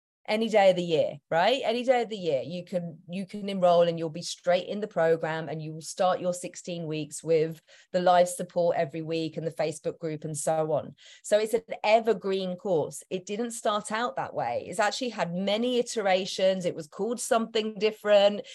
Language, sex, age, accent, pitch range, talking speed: English, female, 30-49, British, 175-230 Hz, 205 wpm